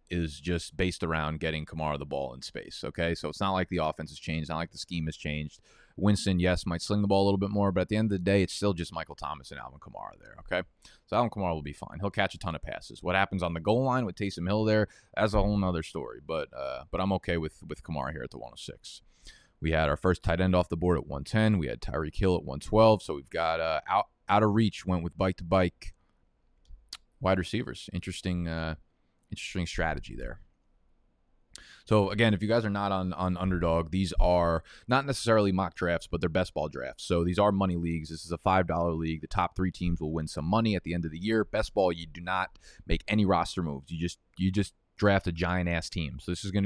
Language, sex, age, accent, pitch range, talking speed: English, male, 30-49, American, 80-100 Hz, 250 wpm